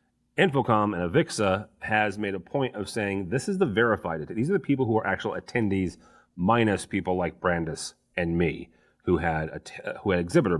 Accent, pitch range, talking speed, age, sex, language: American, 90-120 Hz, 200 wpm, 30-49, male, English